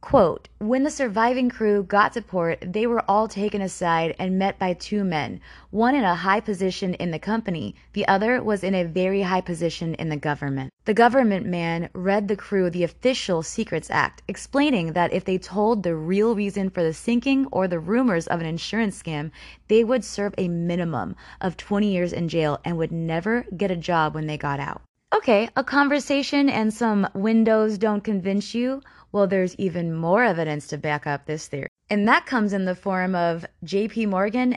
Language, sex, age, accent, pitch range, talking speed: English, female, 20-39, American, 175-230 Hz, 195 wpm